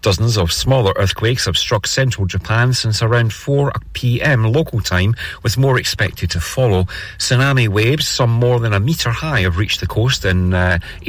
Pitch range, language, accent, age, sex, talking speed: 95-120 Hz, English, British, 40-59, male, 175 wpm